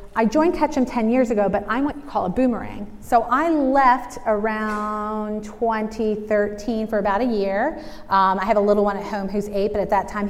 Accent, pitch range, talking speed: American, 195-235 Hz, 210 wpm